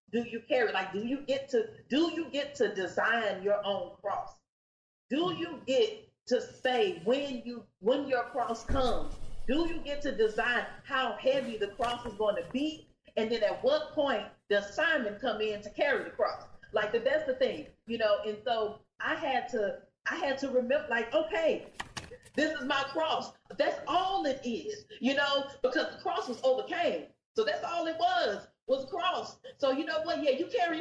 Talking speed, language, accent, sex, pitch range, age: 195 wpm, English, American, female, 215-305 Hz, 40-59